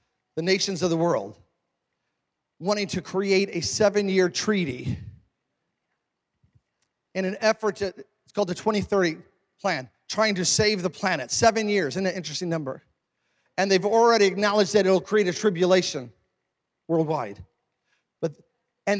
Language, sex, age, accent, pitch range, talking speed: English, male, 40-59, American, 165-215 Hz, 135 wpm